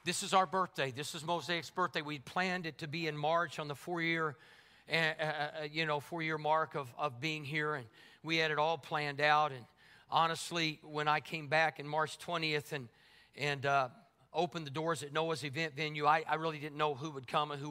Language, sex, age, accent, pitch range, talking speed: English, male, 50-69, American, 145-165 Hz, 215 wpm